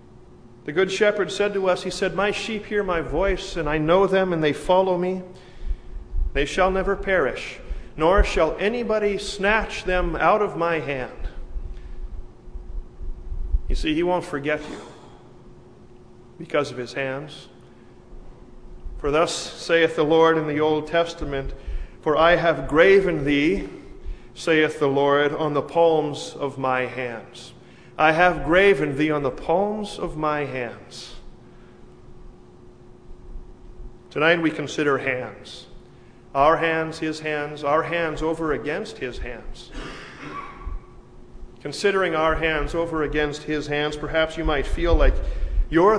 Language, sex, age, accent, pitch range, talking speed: English, male, 40-59, American, 140-180 Hz, 135 wpm